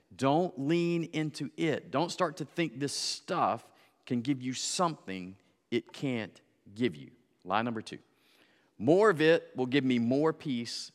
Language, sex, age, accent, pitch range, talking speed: English, male, 40-59, American, 100-150 Hz, 160 wpm